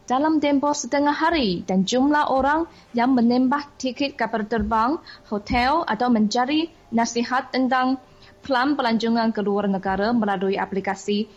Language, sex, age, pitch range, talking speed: Malay, female, 20-39, 205-255 Hz, 120 wpm